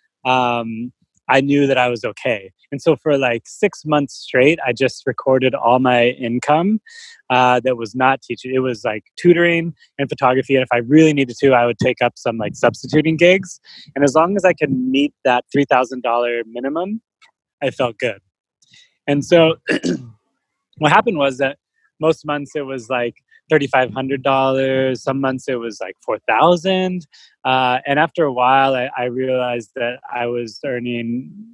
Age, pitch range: 20-39, 125-155 Hz